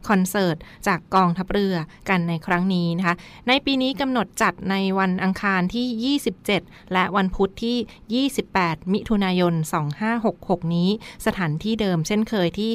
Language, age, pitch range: Thai, 20-39, 175-210 Hz